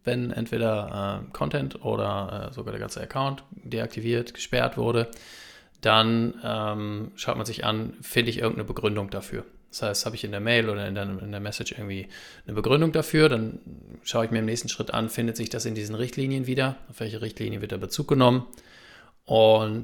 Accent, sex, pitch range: German, male, 110-125 Hz